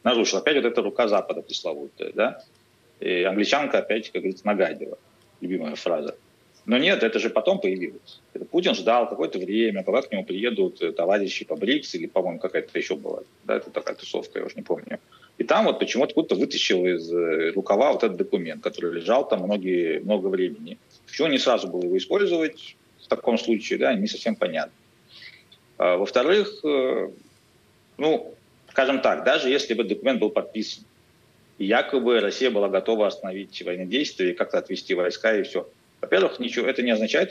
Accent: native